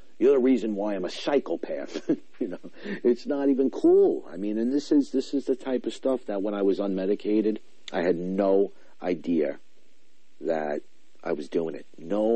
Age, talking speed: 50-69, 190 wpm